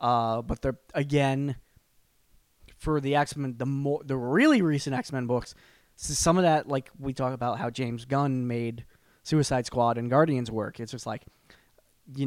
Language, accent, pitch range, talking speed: English, American, 120-145 Hz, 170 wpm